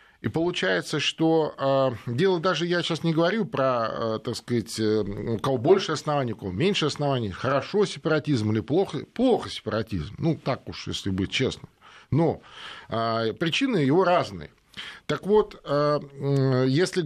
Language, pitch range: Russian, 120-170 Hz